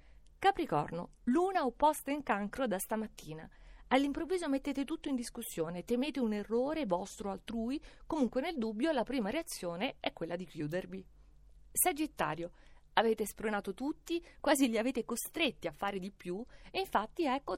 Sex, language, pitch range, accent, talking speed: female, Italian, 190-275 Hz, native, 145 wpm